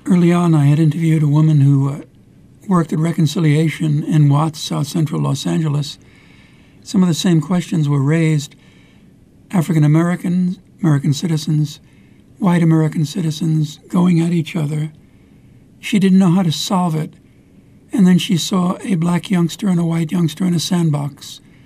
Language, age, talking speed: English, 60-79, 155 wpm